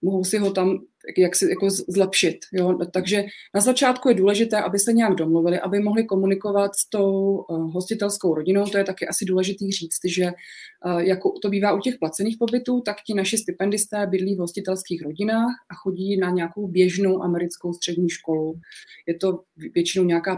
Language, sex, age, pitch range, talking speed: Czech, female, 20-39, 175-210 Hz, 170 wpm